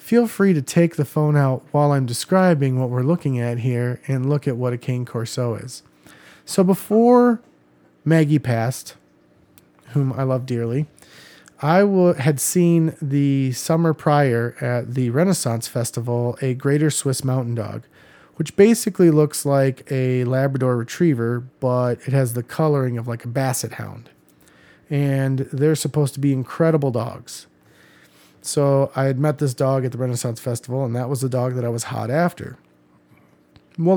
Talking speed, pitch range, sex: 160 wpm, 125-150 Hz, male